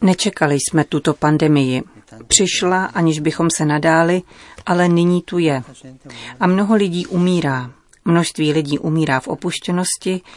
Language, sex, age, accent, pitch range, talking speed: Czech, female, 40-59, native, 145-175 Hz, 125 wpm